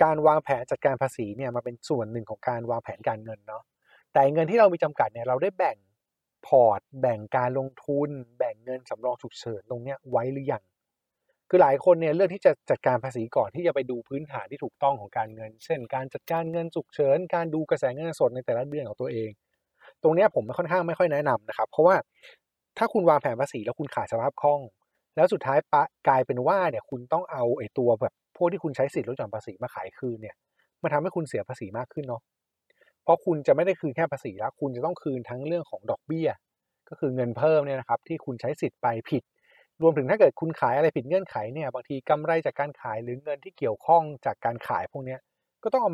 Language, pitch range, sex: Thai, 120-160 Hz, male